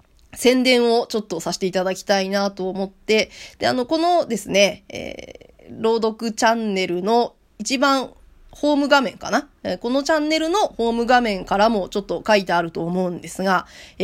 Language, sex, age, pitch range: Japanese, female, 20-39, 200-295 Hz